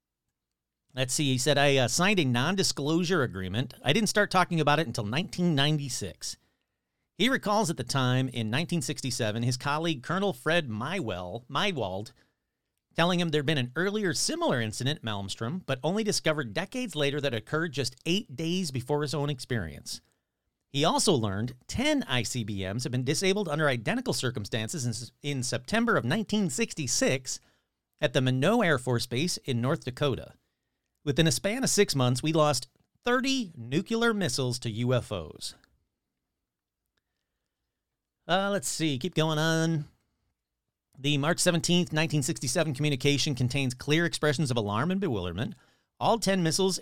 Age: 40-59